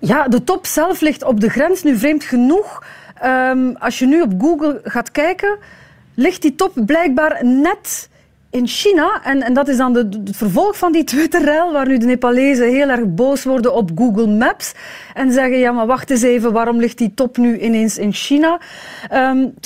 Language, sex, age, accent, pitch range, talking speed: Dutch, female, 30-49, Dutch, 225-280 Hz, 190 wpm